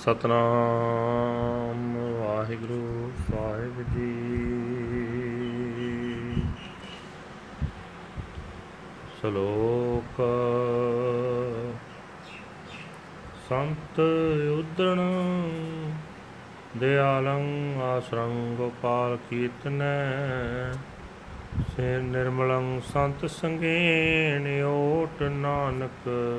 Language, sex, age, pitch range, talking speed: Punjabi, male, 30-49, 120-160 Hz, 40 wpm